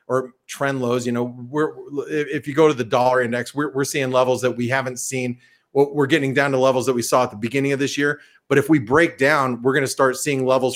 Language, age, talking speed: English, 40-59, 255 wpm